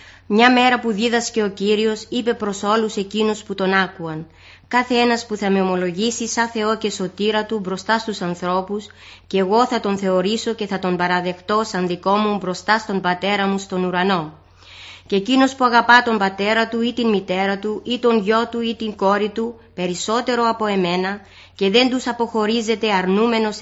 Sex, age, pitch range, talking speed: female, 20-39, 185-225 Hz, 185 wpm